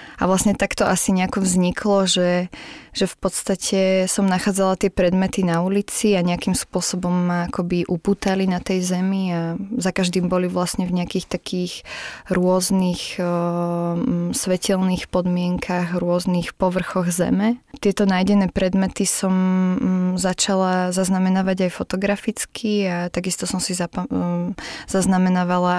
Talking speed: 130 wpm